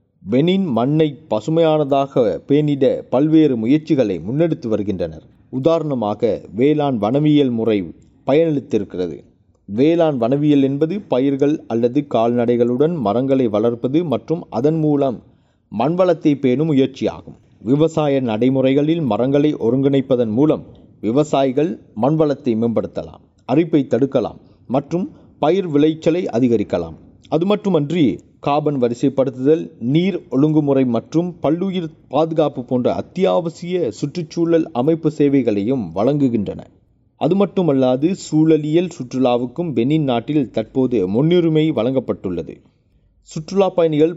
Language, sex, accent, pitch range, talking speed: Tamil, male, native, 125-160 Hz, 90 wpm